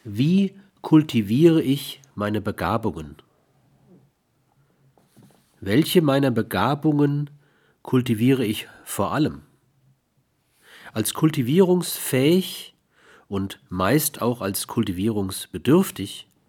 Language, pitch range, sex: German, 110-140 Hz, male